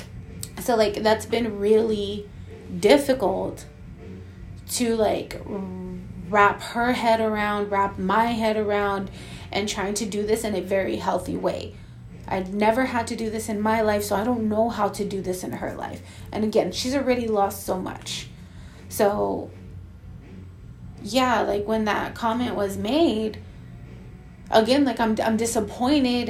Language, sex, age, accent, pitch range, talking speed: English, female, 20-39, American, 195-235 Hz, 150 wpm